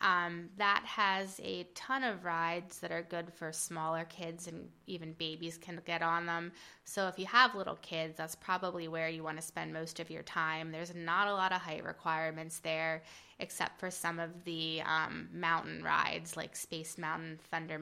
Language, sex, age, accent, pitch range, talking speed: English, female, 20-39, American, 160-180 Hz, 190 wpm